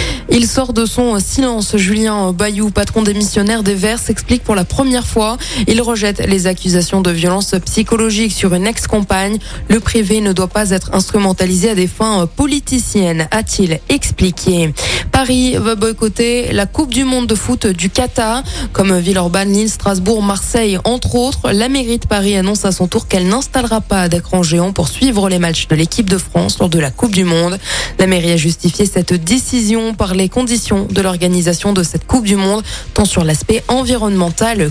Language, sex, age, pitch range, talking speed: French, female, 20-39, 185-240 Hz, 185 wpm